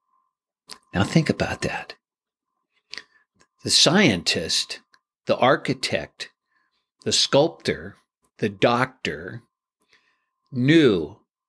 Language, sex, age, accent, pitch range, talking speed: English, male, 50-69, American, 115-190 Hz, 70 wpm